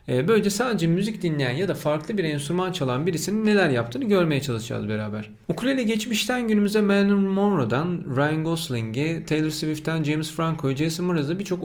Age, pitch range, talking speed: 40-59, 135-190 Hz, 155 wpm